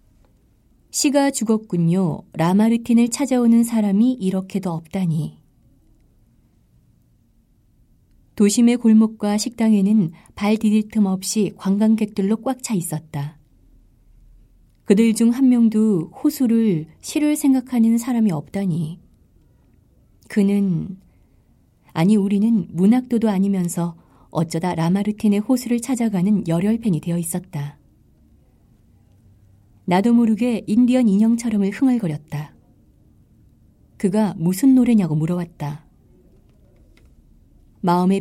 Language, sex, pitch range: Korean, female, 155-225 Hz